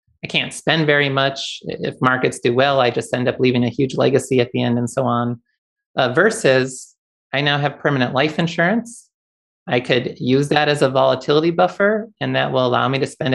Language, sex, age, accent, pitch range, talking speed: English, male, 30-49, American, 125-150 Hz, 205 wpm